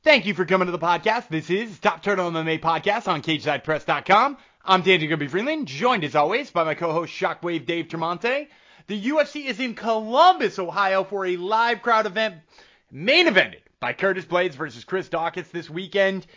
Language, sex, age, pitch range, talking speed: English, male, 30-49, 155-210 Hz, 175 wpm